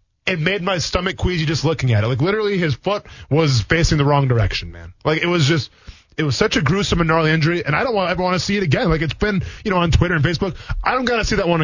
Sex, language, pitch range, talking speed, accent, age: male, English, 125-200 Hz, 290 wpm, American, 20-39